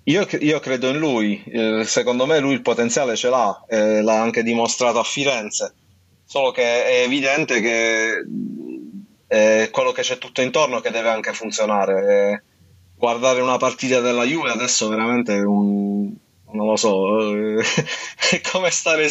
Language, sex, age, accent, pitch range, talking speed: Italian, male, 30-49, native, 105-130 Hz, 145 wpm